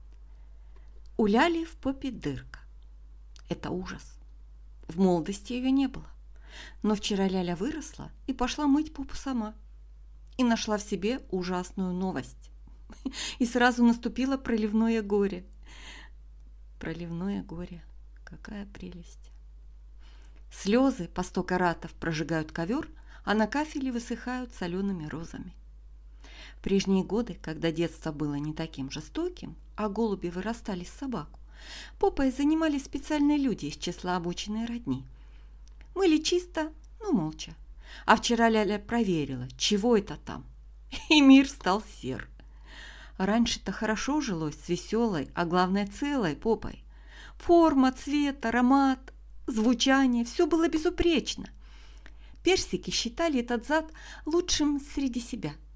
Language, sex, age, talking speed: Russian, female, 50-69, 115 wpm